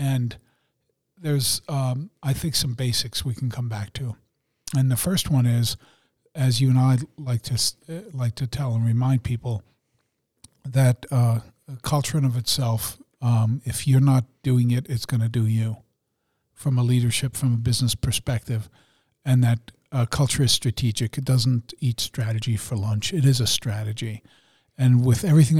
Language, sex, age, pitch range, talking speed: English, male, 50-69, 115-135 Hz, 170 wpm